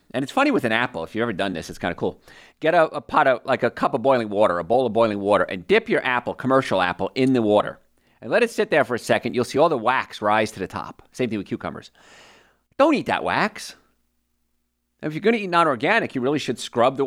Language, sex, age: English, male, 40-59